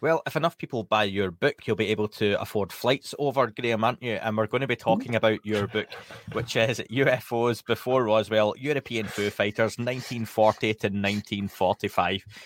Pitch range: 100-120 Hz